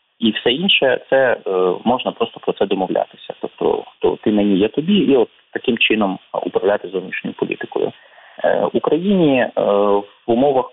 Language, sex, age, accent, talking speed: Ukrainian, male, 30-49, native, 140 wpm